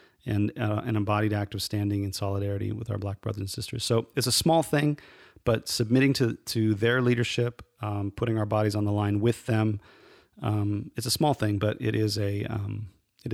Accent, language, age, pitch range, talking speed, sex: American, English, 30-49, 105-125 Hz, 205 wpm, male